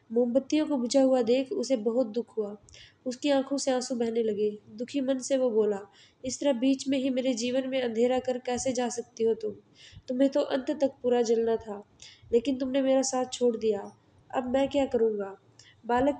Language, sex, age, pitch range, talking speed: Hindi, female, 20-39, 225-265 Hz, 195 wpm